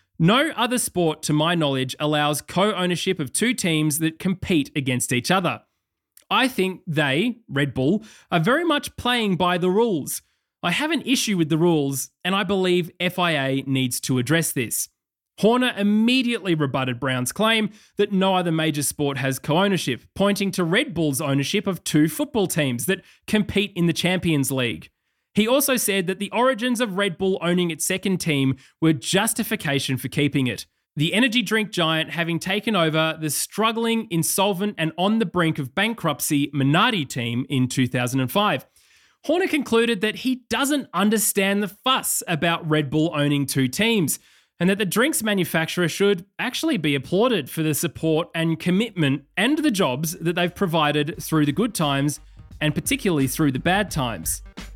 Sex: male